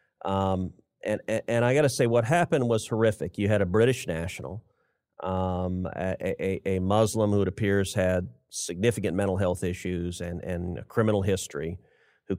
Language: English